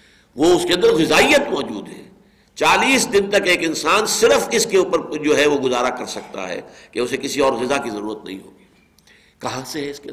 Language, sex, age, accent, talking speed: English, male, 60-79, Indian, 220 wpm